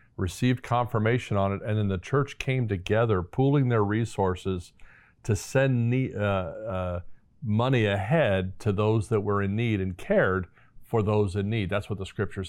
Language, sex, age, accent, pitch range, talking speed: English, male, 50-69, American, 95-120 Hz, 170 wpm